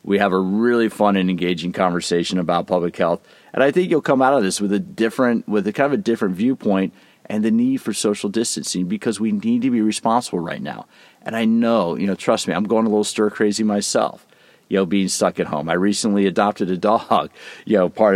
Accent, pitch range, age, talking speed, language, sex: American, 95-110 Hz, 40-59, 235 wpm, English, male